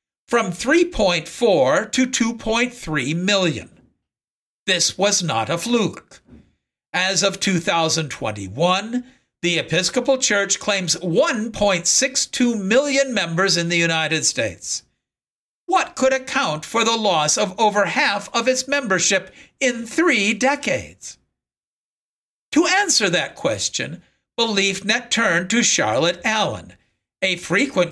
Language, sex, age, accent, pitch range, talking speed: English, male, 50-69, American, 185-265 Hz, 105 wpm